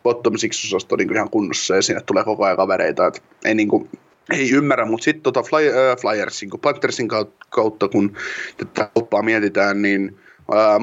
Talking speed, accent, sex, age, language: 170 wpm, native, male, 20-39, Finnish